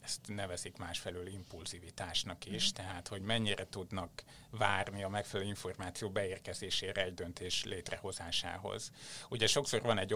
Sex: male